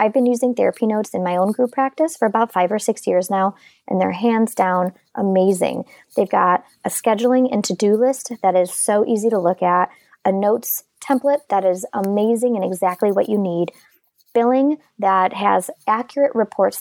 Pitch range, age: 190-245 Hz, 20-39